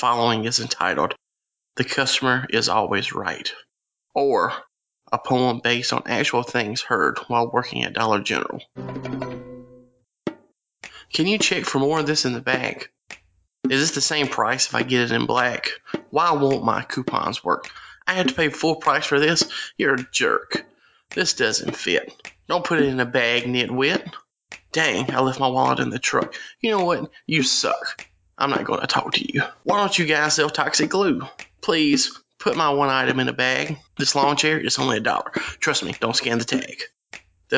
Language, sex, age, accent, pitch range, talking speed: English, male, 30-49, American, 125-155 Hz, 185 wpm